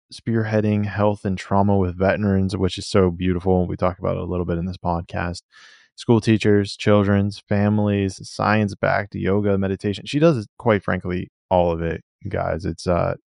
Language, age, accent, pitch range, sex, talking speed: English, 20-39, American, 90-105 Hz, male, 165 wpm